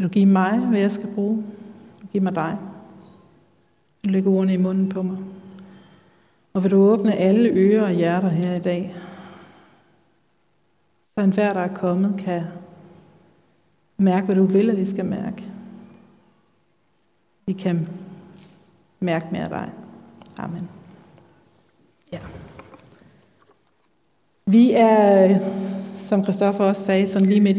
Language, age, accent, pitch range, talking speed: Danish, 60-79, native, 185-205 Hz, 135 wpm